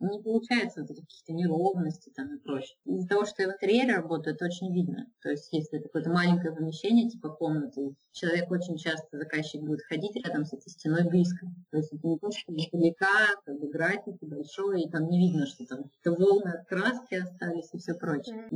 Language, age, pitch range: Russian, 20-39, 155-190 Hz